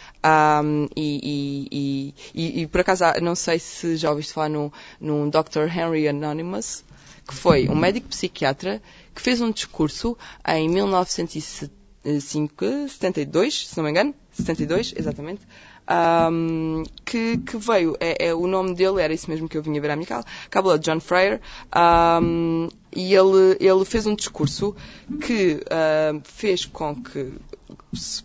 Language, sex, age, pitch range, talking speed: Portuguese, female, 20-39, 155-210 Hz, 155 wpm